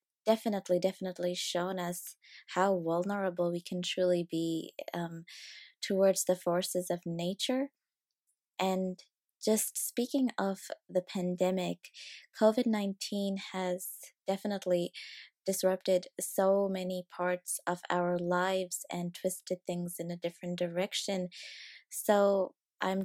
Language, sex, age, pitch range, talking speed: English, female, 20-39, 180-210 Hz, 105 wpm